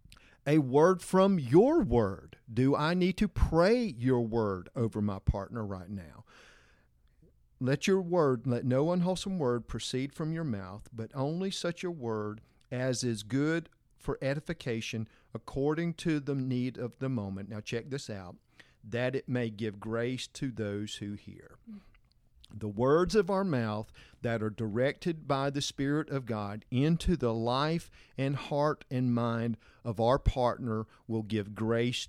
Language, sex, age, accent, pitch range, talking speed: English, male, 50-69, American, 110-150 Hz, 155 wpm